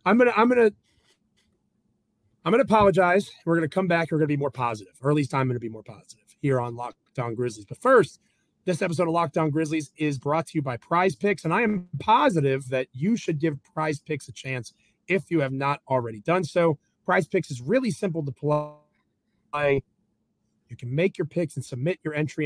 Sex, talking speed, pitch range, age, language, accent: male, 205 wpm, 135-185 Hz, 30-49, English, American